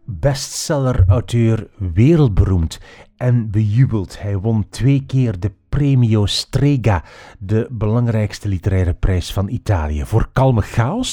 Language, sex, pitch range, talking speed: Dutch, male, 95-125 Hz, 115 wpm